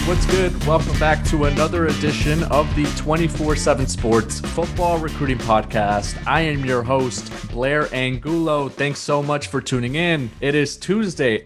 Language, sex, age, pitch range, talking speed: English, male, 30-49, 120-150 Hz, 150 wpm